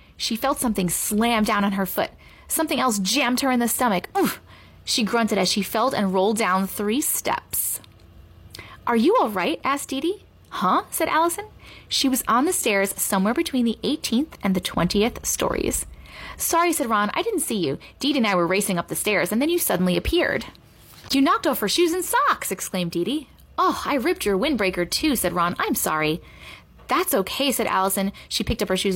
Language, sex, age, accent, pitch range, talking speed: English, female, 30-49, American, 195-325 Hz, 205 wpm